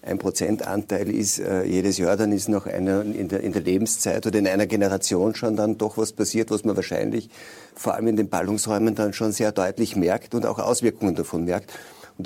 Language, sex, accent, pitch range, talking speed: German, male, German, 95-110 Hz, 205 wpm